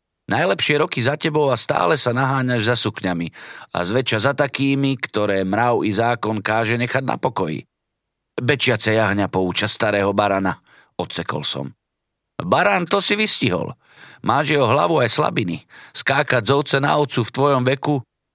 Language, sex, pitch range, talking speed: Slovak, male, 105-140 Hz, 150 wpm